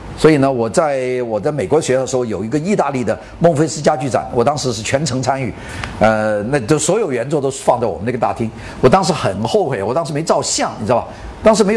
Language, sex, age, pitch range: Chinese, male, 50-69, 110-165 Hz